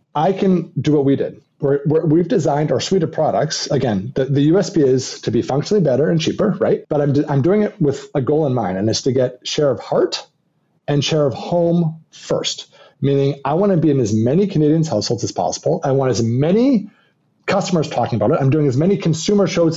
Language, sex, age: English, male, 30-49